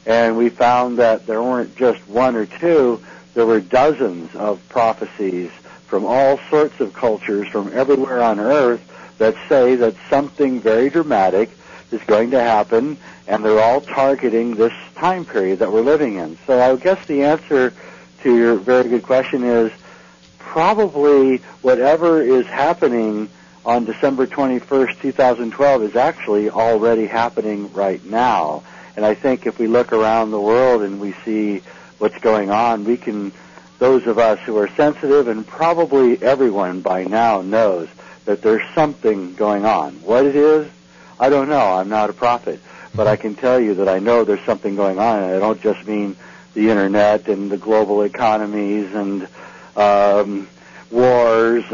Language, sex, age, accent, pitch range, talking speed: English, male, 60-79, American, 105-130 Hz, 165 wpm